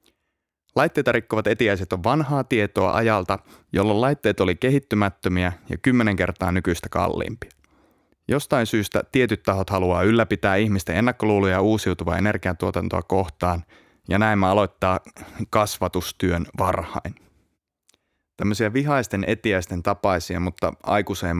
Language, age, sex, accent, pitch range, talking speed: Finnish, 30-49, male, native, 90-105 Hz, 110 wpm